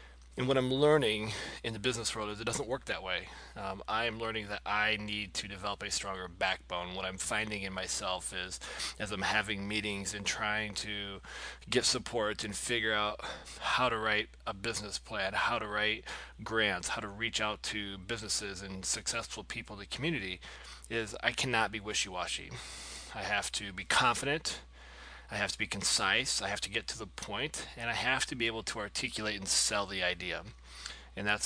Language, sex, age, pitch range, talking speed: English, male, 20-39, 95-110 Hz, 195 wpm